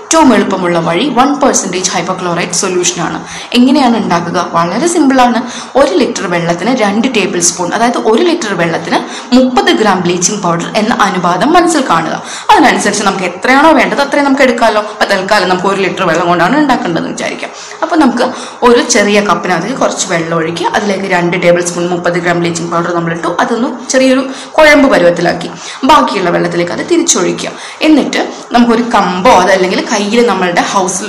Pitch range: 180-255 Hz